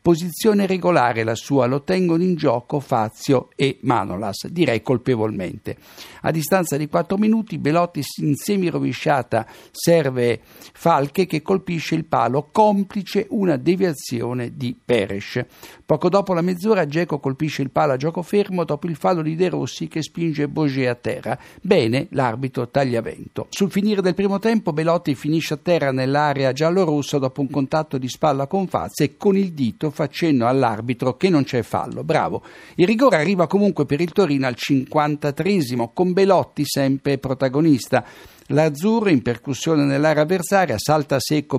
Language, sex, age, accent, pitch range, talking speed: Italian, male, 60-79, native, 135-175 Hz, 155 wpm